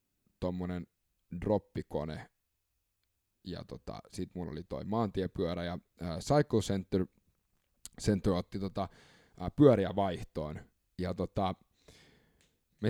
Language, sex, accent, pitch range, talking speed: Finnish, male, native, 95-115 Hz, 100 wpm